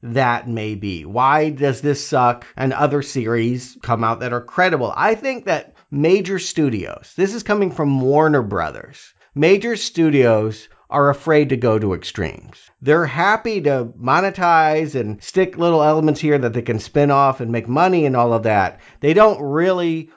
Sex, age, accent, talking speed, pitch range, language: male, 50-69, American, 175 wpm, 125-165 Hz, English